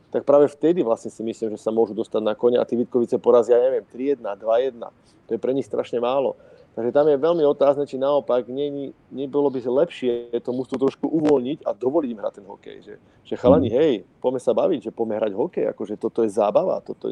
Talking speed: 220 wpm